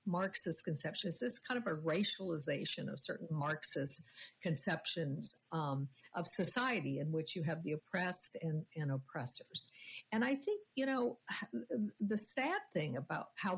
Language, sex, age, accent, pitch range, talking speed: English, female, 60-79, American, 155-200 Hz, 150 wpm